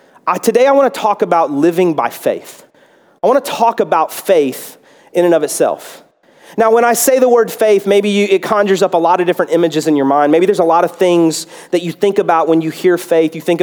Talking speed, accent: 240 wpm, American